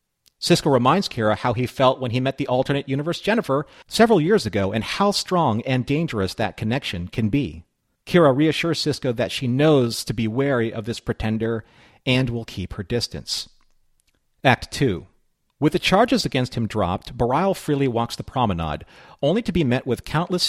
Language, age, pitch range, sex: English, 40-59, 110-150 Hz, male